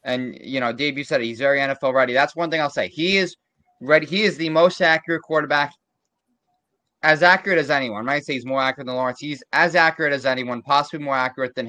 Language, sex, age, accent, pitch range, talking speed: English, male, 20-39, American, 135-175 Hz, 230 wpm